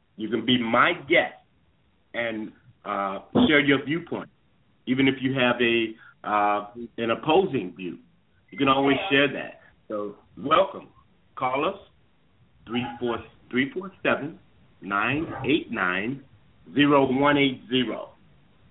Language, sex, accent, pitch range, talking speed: English, male, American, 115-155 Hz, 95 wpm